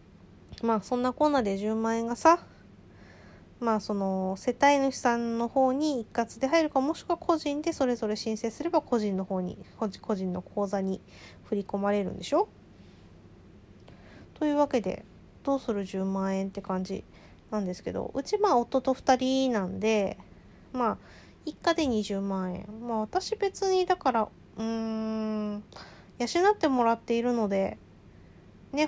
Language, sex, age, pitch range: Japanese, female, 20-39, 210-275 Hz